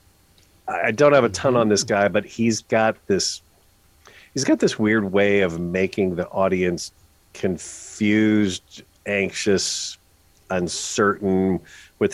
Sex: male